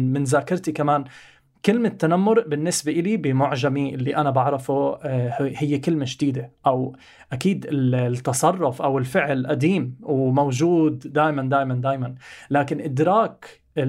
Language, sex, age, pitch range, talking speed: Arabic, male, 20-39, 130-155 Hz, 110 wpm